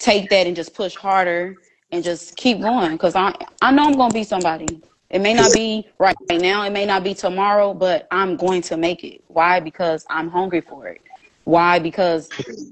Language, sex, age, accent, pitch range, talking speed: English, female, 20-39, American, 160-185 Hz, 210 wpm